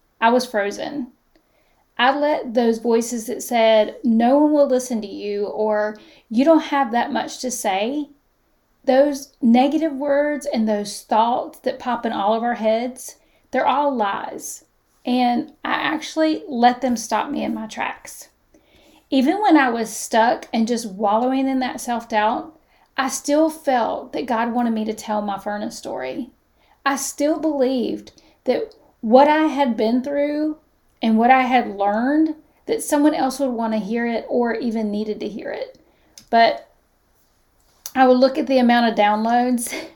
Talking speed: 165 wpm